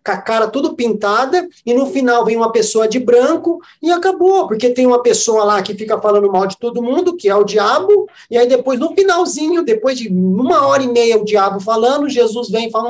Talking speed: 225 wpm